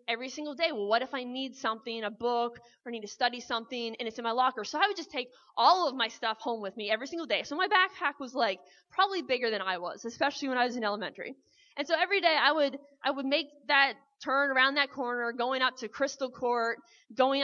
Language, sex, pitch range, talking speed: English, female, 235-310 Hz, 240 wpm